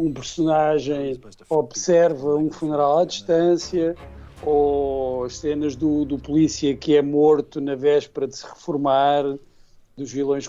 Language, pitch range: Portuguese, 140-170 Hz